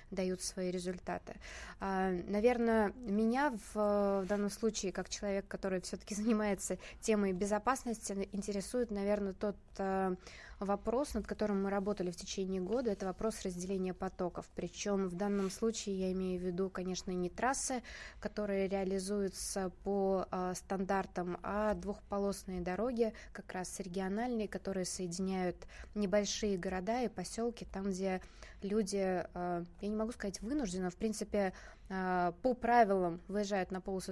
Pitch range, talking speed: 185-210 Hz, 130 wpm